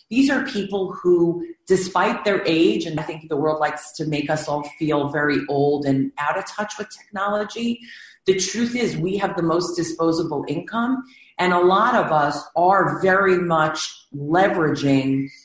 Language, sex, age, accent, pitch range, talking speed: English, female, 40-59, American, 155-195 Hz, 170 wpm